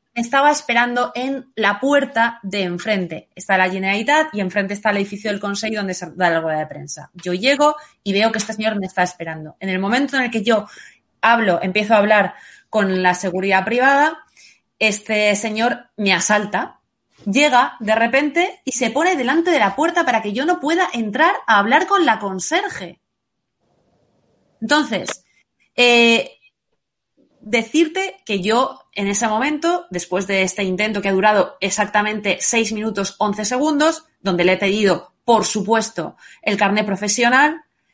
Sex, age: female, 20-39